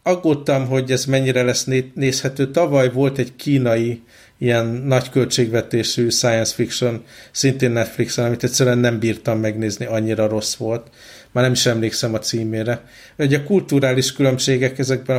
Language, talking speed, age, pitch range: Hungarian, 140 wpm, 50-69, 115-130 Hz